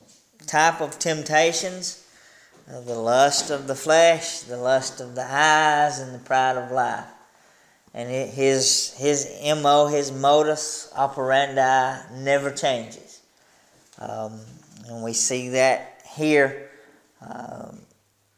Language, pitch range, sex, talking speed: English, 130-155 Hz, male, 110 wpm